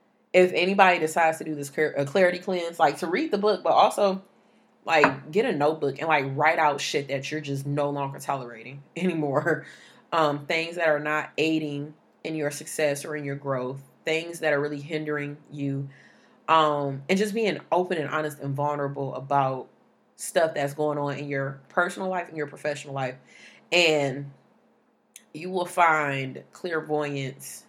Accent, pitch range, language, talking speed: American, 140-165 Hz, English, 165 wpm